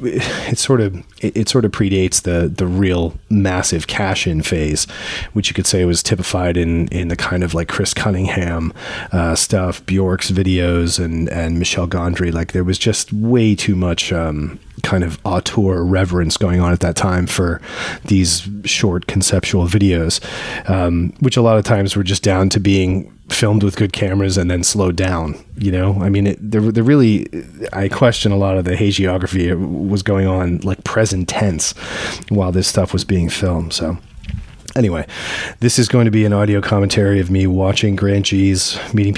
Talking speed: 180 wpm